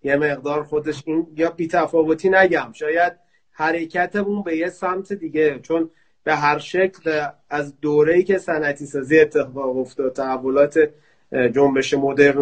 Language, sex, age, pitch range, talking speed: Persian, male, 30-49, 150-180 Hz, 135 wpm